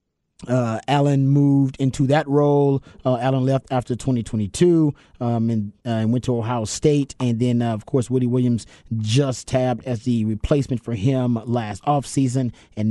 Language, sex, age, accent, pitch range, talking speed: English, male, 30-49, American, 115-145 Hz, 165 wpm